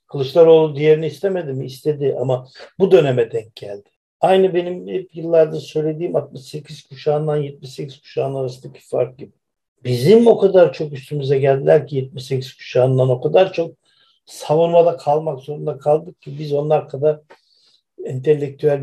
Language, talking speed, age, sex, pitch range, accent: Turkish, 135 wpm, 60-79, male, 130-155 Hz, native